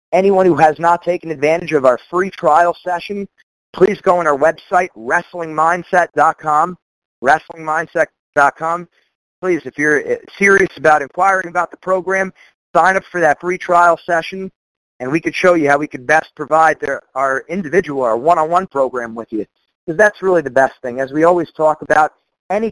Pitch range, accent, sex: 140-175 Hz, American, male